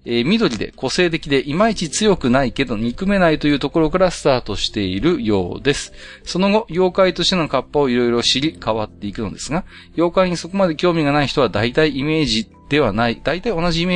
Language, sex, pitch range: Japanese, male, 100-155 Hz